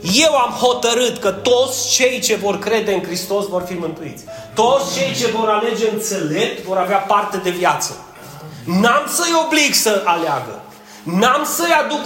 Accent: native